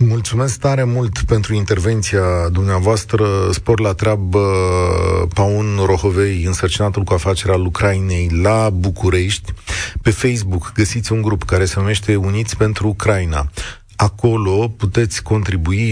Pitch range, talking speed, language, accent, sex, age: 95-110 Hz, 120 wpm, Romanian, native, male, 30-49